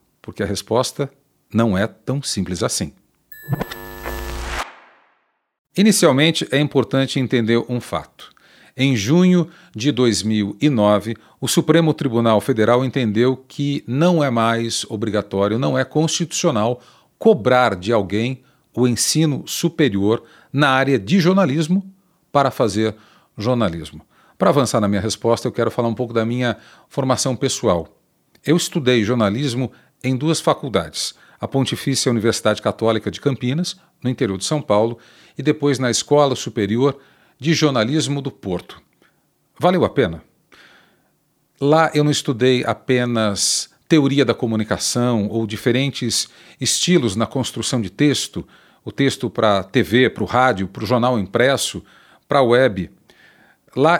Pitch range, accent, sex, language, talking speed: 115-145 Hz, Brazilian, male, Portuguese, 130 wpm